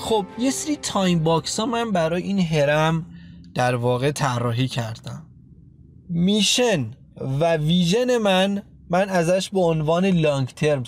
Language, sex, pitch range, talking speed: Persian, male, 145-210 Hz, 130 wpm